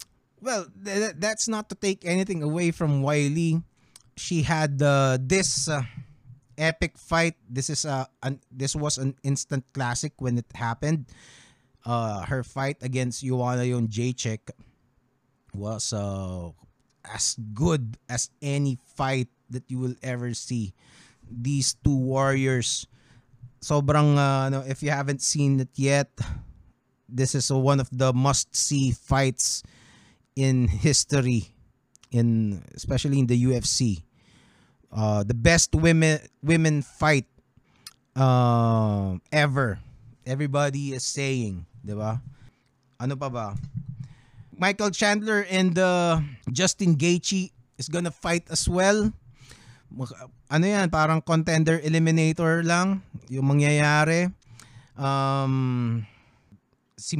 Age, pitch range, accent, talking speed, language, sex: 20-39, 125-155 Hz, native, 120 wpm, Filipino, male